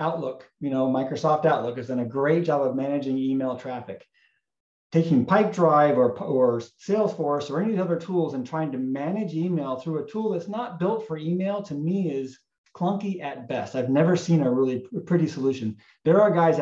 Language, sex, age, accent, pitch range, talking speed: English, male, 40-59, American, 130-160 Hz, 195 wpm